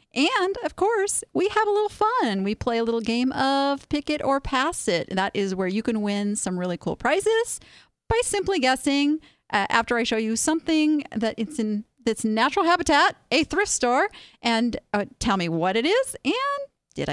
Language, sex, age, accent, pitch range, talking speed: English, female, 40-59, American, 205-300 Hz, 195 wpm